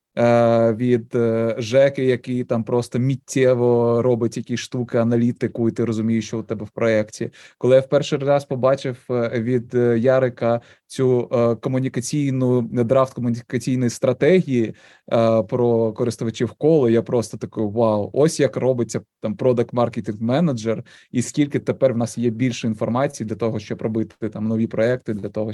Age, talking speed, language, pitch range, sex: 20-39, 145 wpm, Russian, 115-135 Hz, male